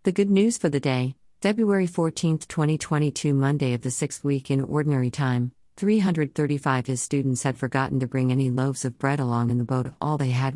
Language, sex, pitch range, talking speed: English, female, 130-170 Hz, 200 wpm